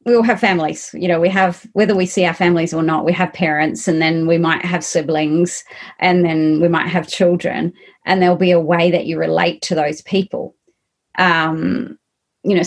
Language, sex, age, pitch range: English, female, 30-49, 165-195 Hz